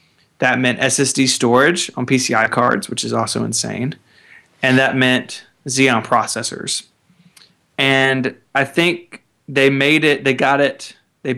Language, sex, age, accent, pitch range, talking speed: English, male, 20-39, American, 115-135 Hz, 135 wpm